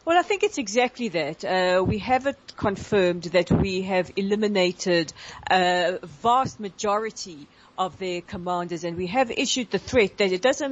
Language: English